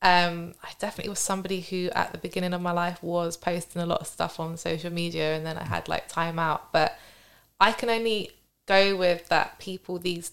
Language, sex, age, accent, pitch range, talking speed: English, female, 20-39, British, 170-185 Hz, 215 wpm